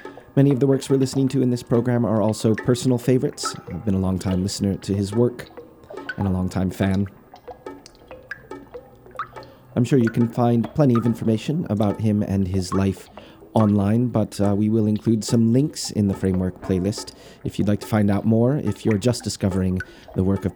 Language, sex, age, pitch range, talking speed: English, male, 30-49, 95-115 Hz, 190 wpm